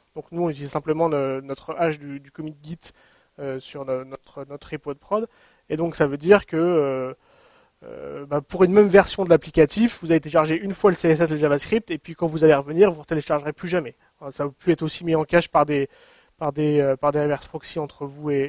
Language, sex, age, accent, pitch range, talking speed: English, male, 30-49, French, 150-180 Hz, 245 wpm